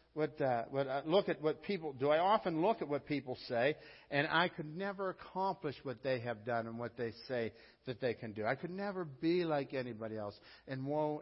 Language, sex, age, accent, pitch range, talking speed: English, male, 60-79, American, 120-165 Hz, 225 wpm